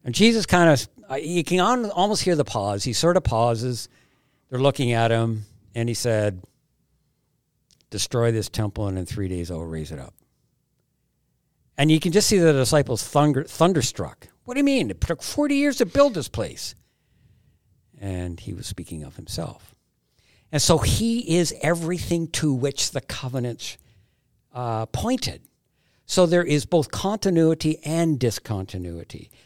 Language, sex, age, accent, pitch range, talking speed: English, male, 60-79, American, 110-150 Hz, 160 wpm